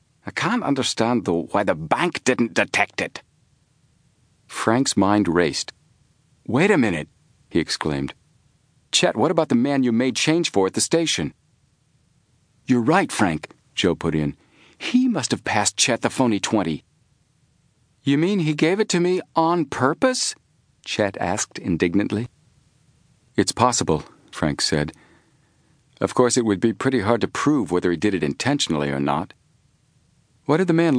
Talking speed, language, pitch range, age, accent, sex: 155 wpm, English, 100-155 Hz, 50-69, American, male